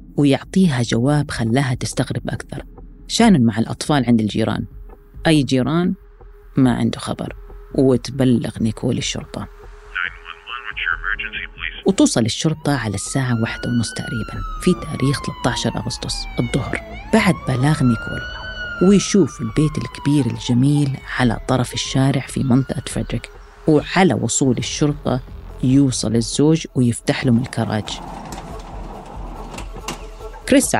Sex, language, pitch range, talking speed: female, Arabic, 120-155 Hz, 100 wpm